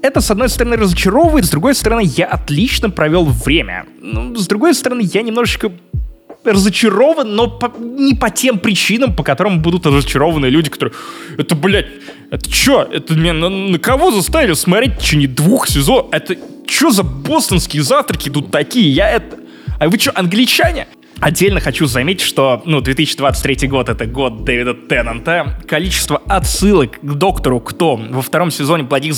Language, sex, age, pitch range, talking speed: Russian, male, 20-39, 135-195 Hz, 165 wpm